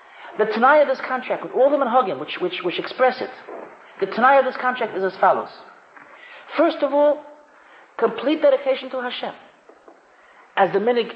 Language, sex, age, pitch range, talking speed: English, male, 40-59, 275-335 Hz, 165 wpm